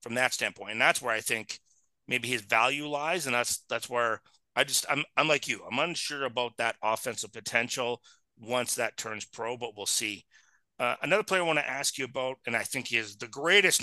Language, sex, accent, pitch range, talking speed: English, male, American, 120-145 Hz, 215 wpm